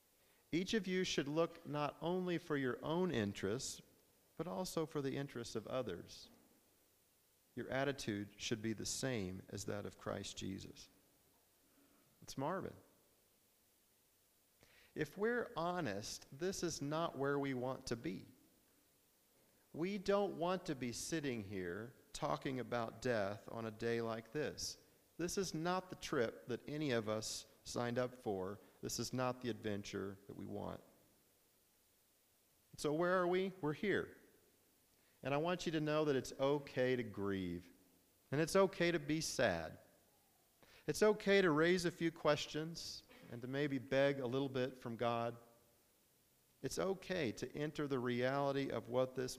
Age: 50-69